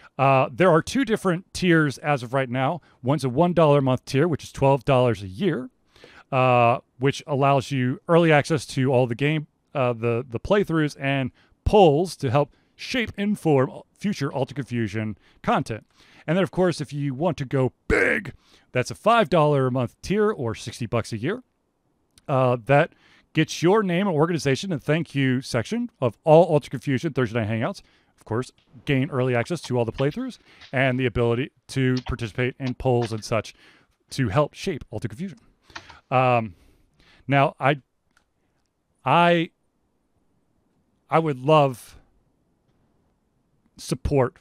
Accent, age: American, 30-49